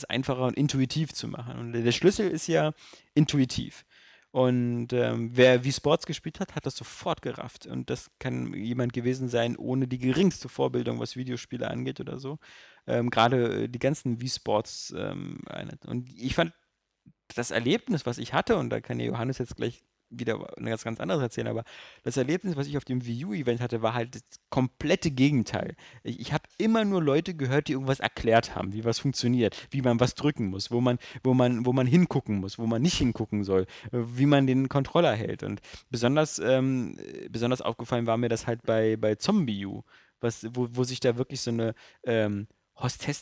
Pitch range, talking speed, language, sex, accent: 115-145 Hz, 190 wpm, German, male, German